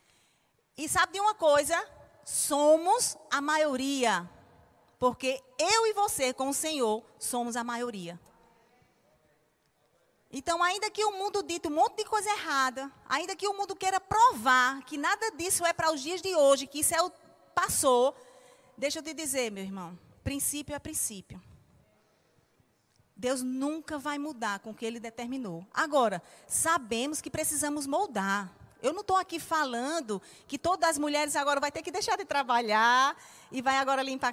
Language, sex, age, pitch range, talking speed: Portuguese, female, 30-49, 255-325 Hz, 165 wpm